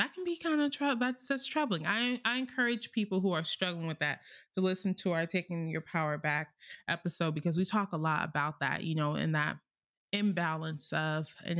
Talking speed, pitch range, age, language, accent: 205 wpm, 155-210 Hz, 20-39, English, American